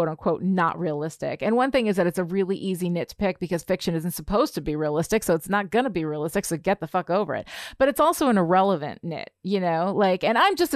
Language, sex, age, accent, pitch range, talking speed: English, female, 30-49, American, 170-225 Hz, 255 wpm